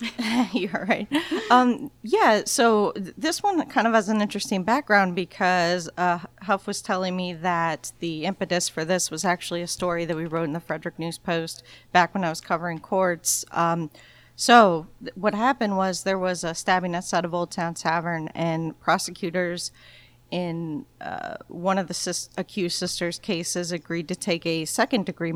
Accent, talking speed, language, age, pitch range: American, 175 wpm, English, 40-59, 165-195 Hz